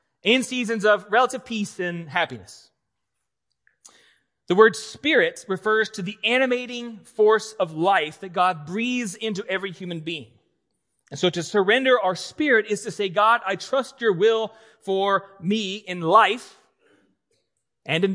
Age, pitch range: 30-49, 165-225 Hz